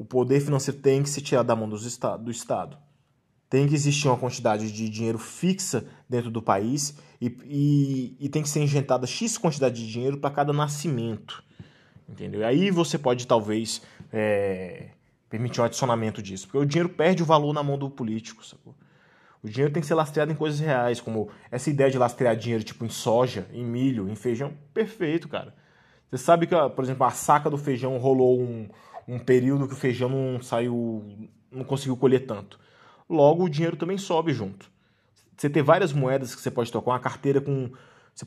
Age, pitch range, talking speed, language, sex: 20-39, 120-150 Hz, 190 wpm, Portuguese, male